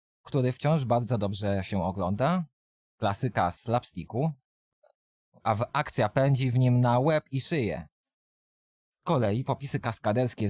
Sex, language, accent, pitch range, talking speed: male, Polish, native, 100-130 Hz, 120 wpm